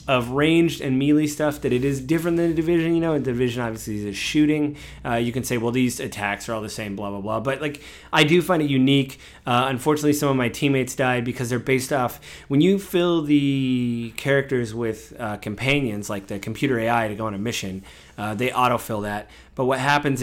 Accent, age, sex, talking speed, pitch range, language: American, 30-49, male, 225 wpm, 115-145 Hz, English